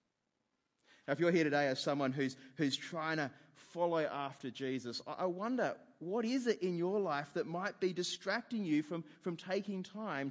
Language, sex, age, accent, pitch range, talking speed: English, male, 30-49, Australian, 135-175 Hz, 180 wpm